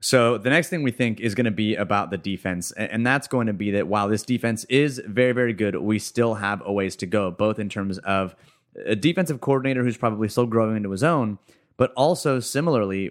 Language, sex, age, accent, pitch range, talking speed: English, male, 30-49, American, 100-125 Hz, 230 wpm